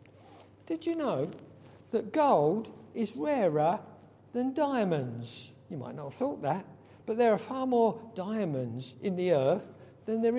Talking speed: 150 wpm